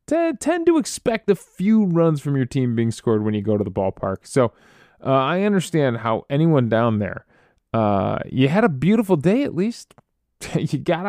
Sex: male